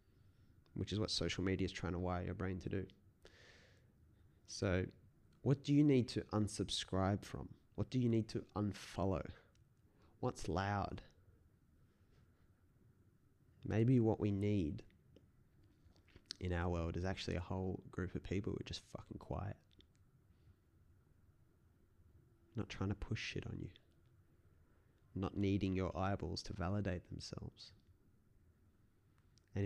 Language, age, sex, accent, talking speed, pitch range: English, 20-39, male, Australian, 125 wpm, 95-110 Hz